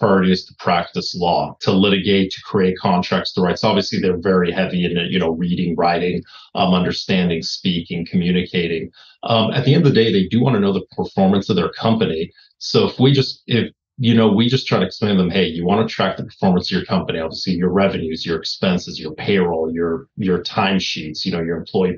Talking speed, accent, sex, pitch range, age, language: 220 wpm, American, male, 90-110 Hz, 30-49, English